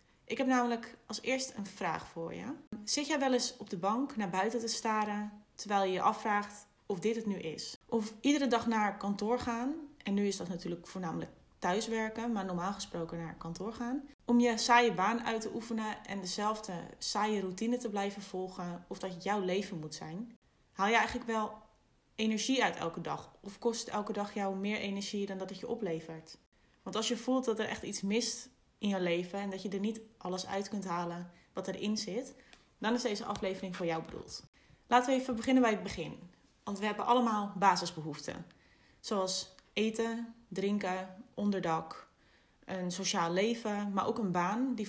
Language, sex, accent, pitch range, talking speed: Dutch, female, Dutch, 185-230 Hz, 190 wpm